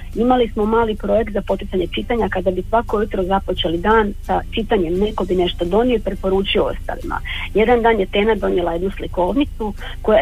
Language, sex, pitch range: Croatian, female, 185-225 Hz